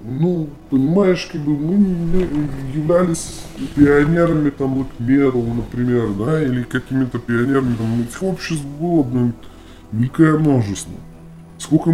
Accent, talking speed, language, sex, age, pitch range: native, 120 wpm, Russian, female, 20-39, 110-150 Hz